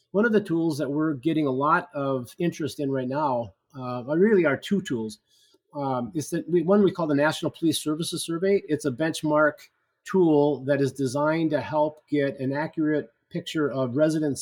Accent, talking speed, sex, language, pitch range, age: American, 195 wpm, male, English, 140-165 Hz, 30-49